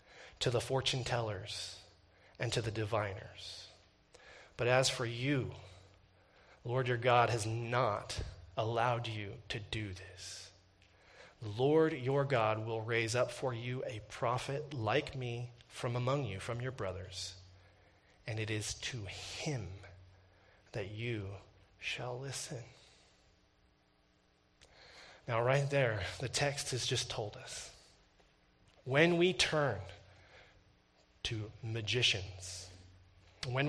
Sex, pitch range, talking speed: male, 100-135 Hz, 115 wpm